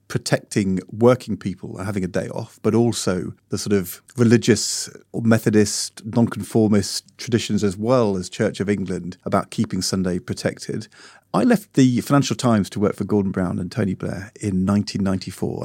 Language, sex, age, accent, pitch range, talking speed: English, male, 40-59, British, 100-125 Hz, 160 wpm